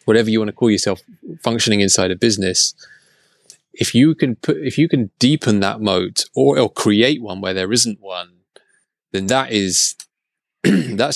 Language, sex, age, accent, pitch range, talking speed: English, male, 20-39, British, 95-115 Hz, 165 wpm